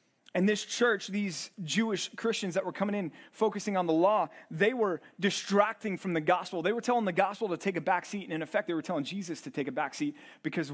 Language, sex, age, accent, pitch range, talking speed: English, male, 30-49, American, 155-215 Hz, 240 wpm